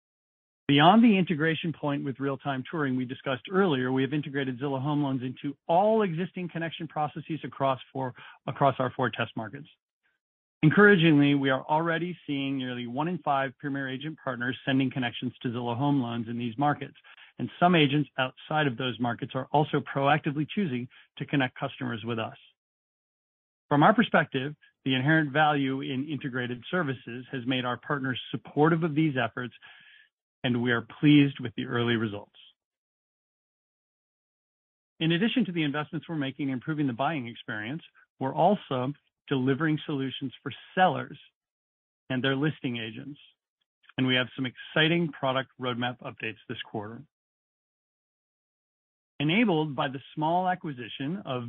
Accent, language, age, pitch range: American, English, 40-59, 130-155 Hz